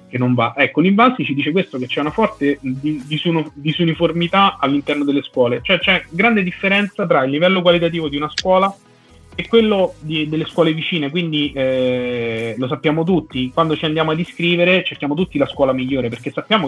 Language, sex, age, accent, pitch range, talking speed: Italian, male, 30-49, native, 130-170 Hz, 180 wpm